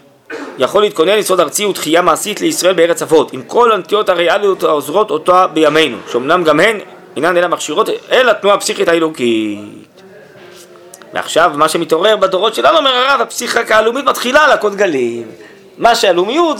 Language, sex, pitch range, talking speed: Hebrew, male, 155-230 Hz, 150 wpm